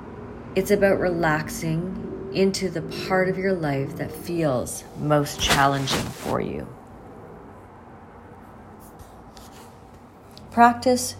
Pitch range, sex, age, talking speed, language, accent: 115-180 Hz, female, 40-59, 85 wpm, English, American